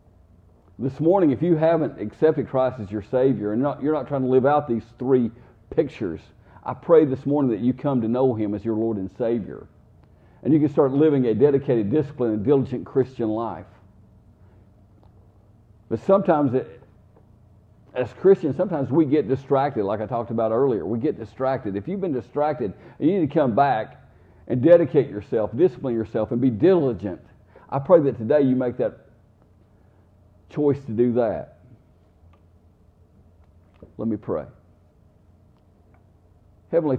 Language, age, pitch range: English, 50-69, 100-135 Hz